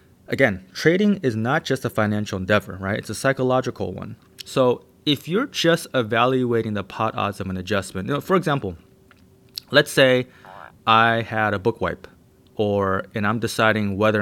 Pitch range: 95-130 Hz